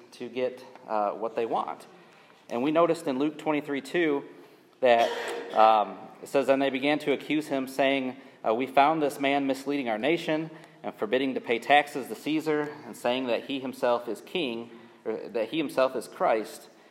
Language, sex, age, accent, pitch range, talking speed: English, male, 30-49, American, 120-145 Hz, 185 wpm